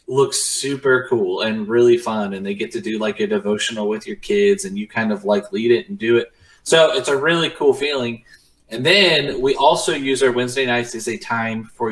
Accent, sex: American, male